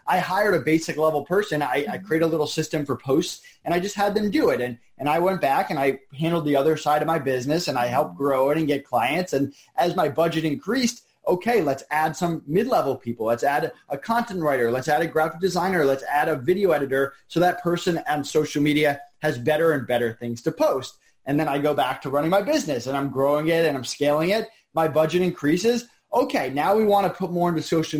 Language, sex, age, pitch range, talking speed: English, male, 30-49, 140-180 Hz, 240 wpm